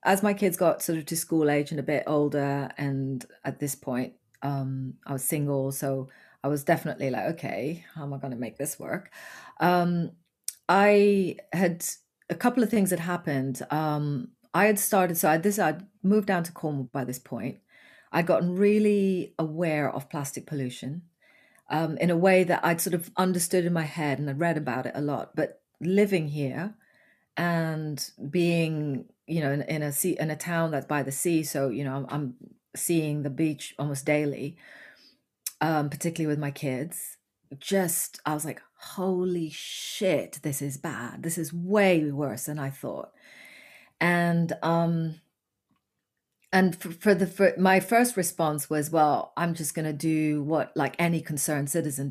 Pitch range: 140-175 Hz